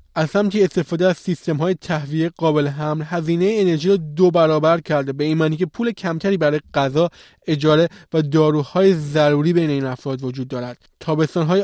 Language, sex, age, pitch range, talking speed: Persian, male, 20-39, 155-195 Hz, 160 wpm